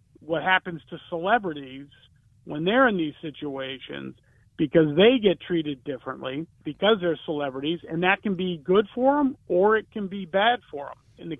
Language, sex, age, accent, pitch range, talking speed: English, male, 50-69, American, 145-190 Hz, 175 wpm